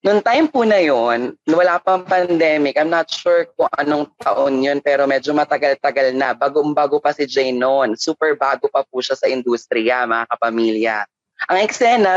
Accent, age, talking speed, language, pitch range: Filipino, 20-39, 175 wpm, English, 140-185 Hz